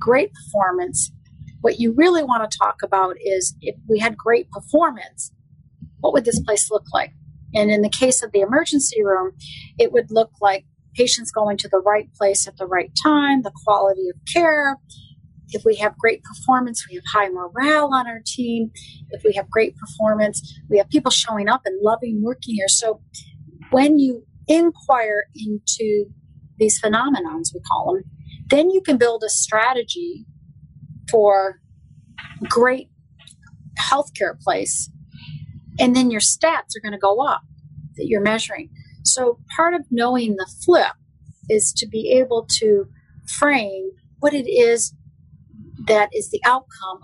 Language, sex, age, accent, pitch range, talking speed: English, female, 40-59, American, 200-275 Hz, 155 wpm